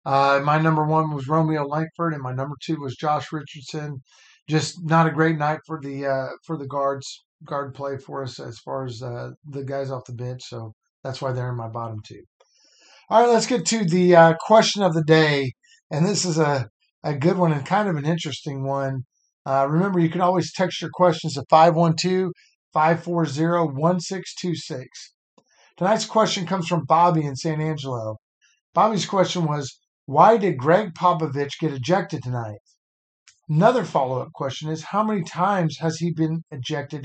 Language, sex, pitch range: English, male, 140-175 Hz